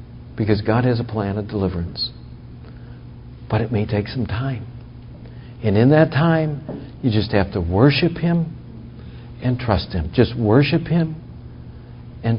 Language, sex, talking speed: English, male, 145 wpm